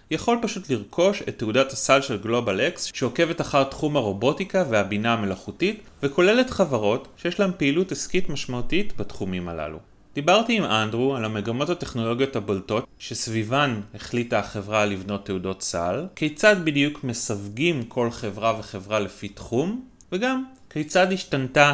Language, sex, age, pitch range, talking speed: Hebrew, male, 30-49, 110-160 Hz, 135 wpm